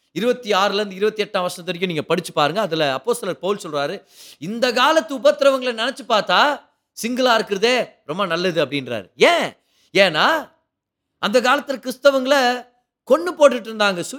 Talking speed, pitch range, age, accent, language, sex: 135 wpm, 175-270 Hz, 30-49, native, Tamil, male